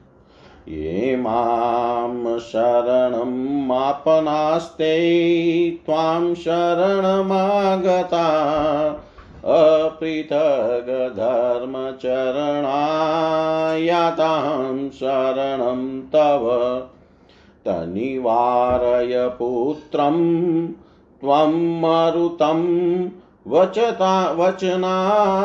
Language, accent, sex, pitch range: Hindi, native, male, 125-165 Hz